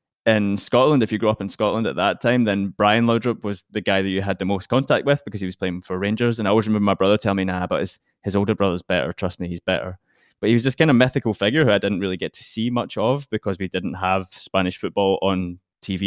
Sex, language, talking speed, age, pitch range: male, English, 275 wpm, 20-39, 95-110 Hz